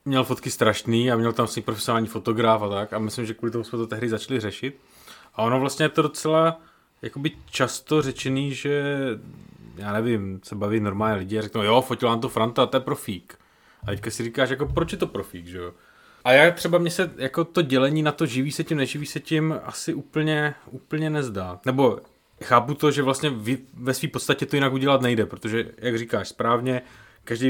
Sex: male